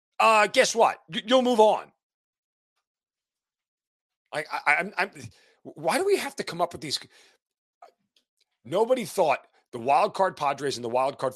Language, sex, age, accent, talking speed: English, male, 40-59, American, 155 wpm